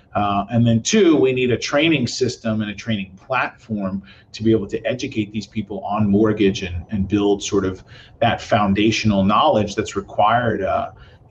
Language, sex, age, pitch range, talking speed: English, male, 40-59, 105-125 Hz, 175 wpm